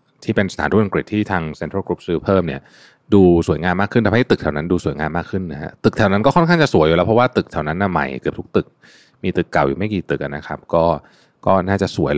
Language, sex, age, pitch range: Thai, male, 20-39, 80-105 Hz